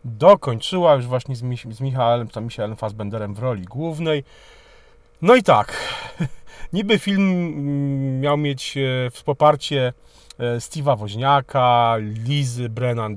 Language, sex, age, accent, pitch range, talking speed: Polish, male, 40-59, native, 115-145 Hz, 115 wpm